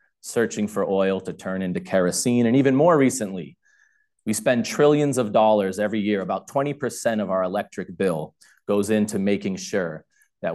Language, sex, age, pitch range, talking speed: English, male, 30-49, 105-135 Hz, 170 wpm